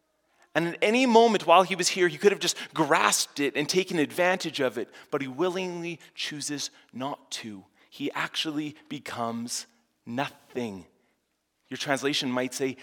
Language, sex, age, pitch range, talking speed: English, male, 30-49, 145-190 Hz, 155 wpm